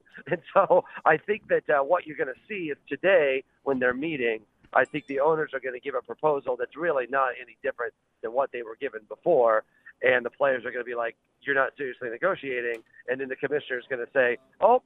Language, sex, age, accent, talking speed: English, male, 40-59, American, 235 wpm